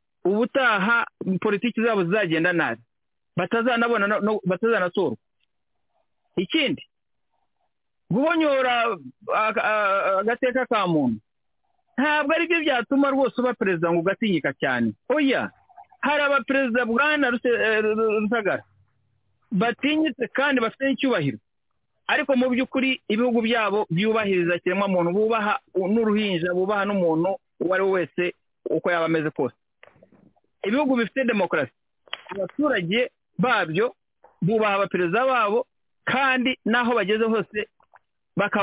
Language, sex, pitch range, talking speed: English, male, 185-250 Hz, 105 wpm